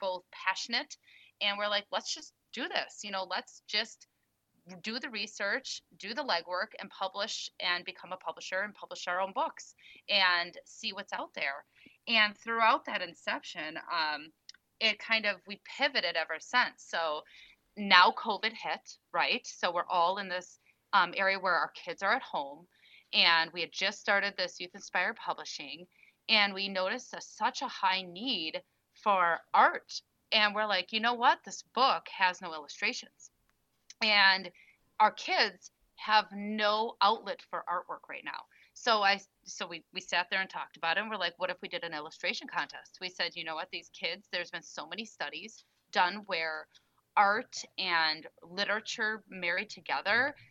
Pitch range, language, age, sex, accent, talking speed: 180-215 Hz, English, 30-49, female, American, 170 wpm